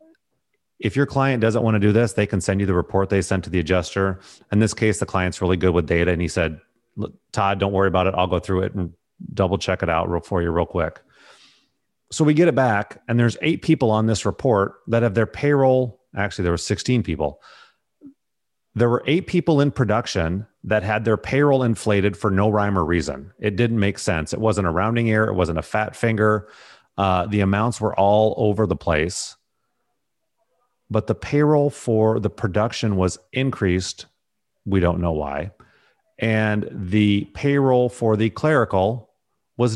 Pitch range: 95-120 Hz